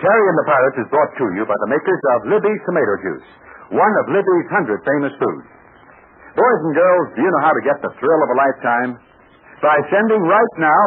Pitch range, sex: 165-220 Hz, male